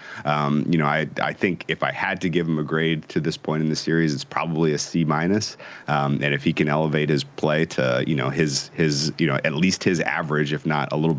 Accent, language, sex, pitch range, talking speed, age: American, English, male, 70-80 Hz, 250 wpm, 30-49